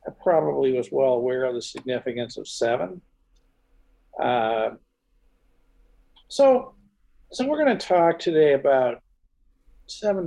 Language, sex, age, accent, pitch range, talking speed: English, male, 50-69, American, 125-185 Hz, 115 wpm